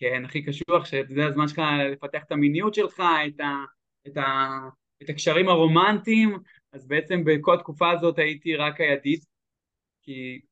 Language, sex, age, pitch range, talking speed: Hebrew, male, 20-39, 145-180 Hz, 150 wpm